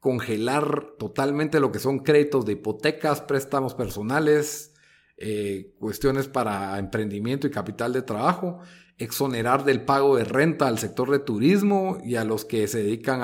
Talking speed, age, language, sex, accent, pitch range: 150 wpm, 40-59, Spanish, male, Mexican, 105-145 Hz